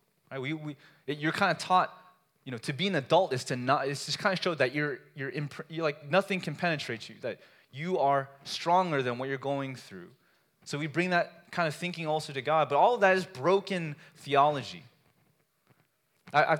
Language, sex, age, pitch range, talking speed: English, male, 20-39, 130-175 Hz, 215 wpm